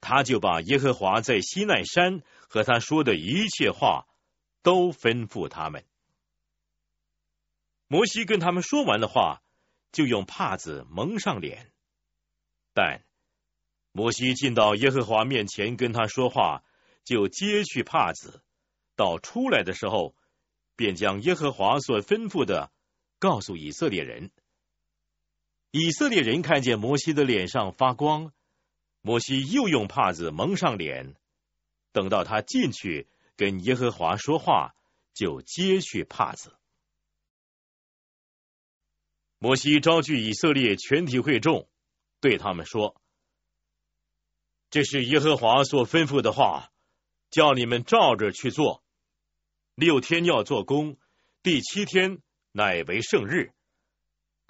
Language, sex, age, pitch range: Chinese, male, 50-69, 110-165 Hz